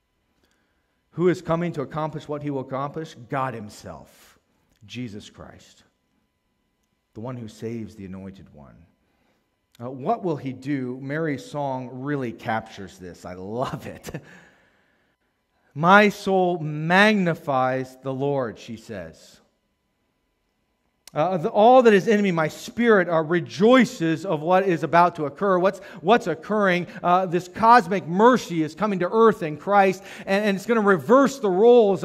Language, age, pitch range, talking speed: English, 40-59, 155-200 Hz, 145 wpm